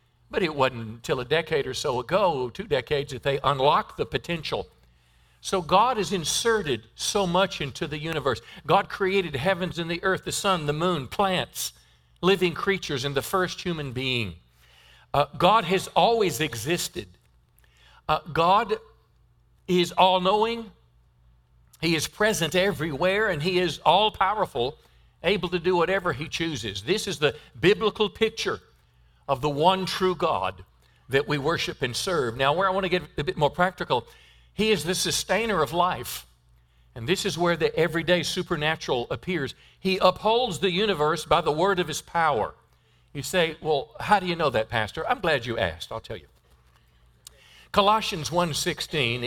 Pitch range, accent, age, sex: 115-185 Hz, American, 50-69, male